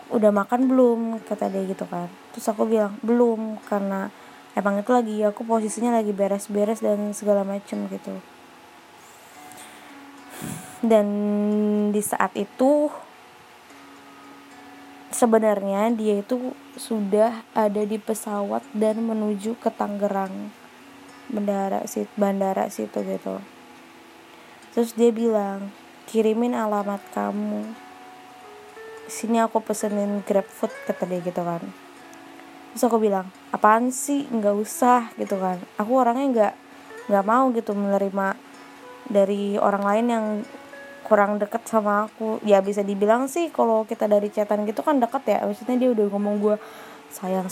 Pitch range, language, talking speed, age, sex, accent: 205-240 Hz, Indonesian, 125 wpm, 20-39, female, native